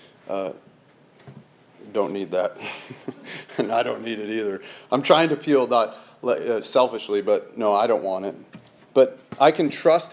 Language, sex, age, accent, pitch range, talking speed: English, male, 40-59, American, 125-165 Hz, 160 wpm